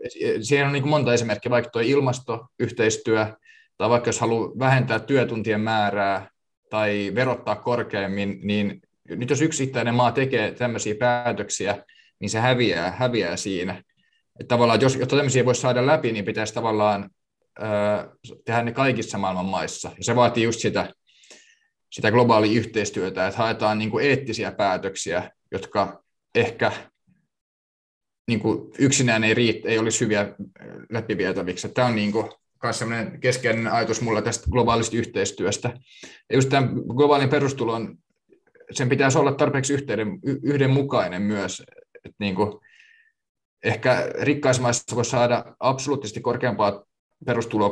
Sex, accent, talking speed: male, native, 130 wpm